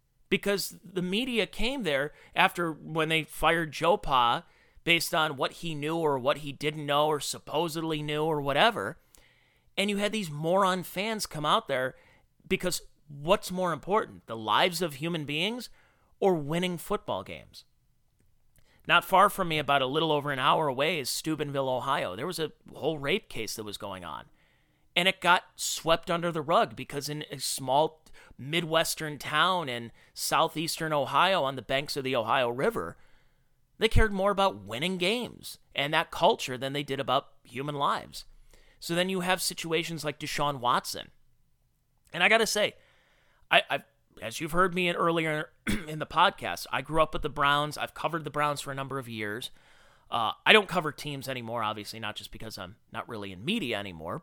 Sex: male